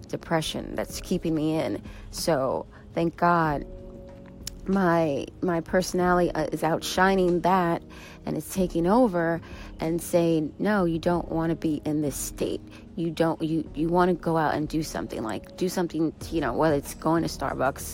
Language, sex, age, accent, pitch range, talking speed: English, female, 30-49, American, 165-190 Hz, 165 wpm